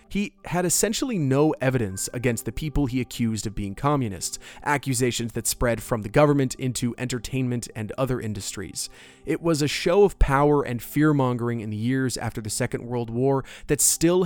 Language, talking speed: English, 175 wpm